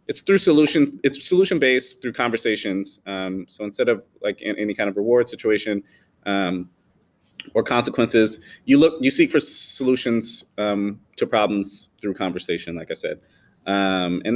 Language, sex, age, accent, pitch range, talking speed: English, male, 30-49, American, 100-125 Hz, 150 wpm